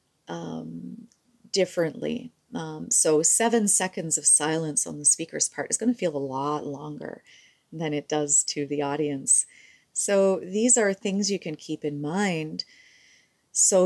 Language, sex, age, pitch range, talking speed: English, female, 40-59, 145-195 Hz, 150 wpm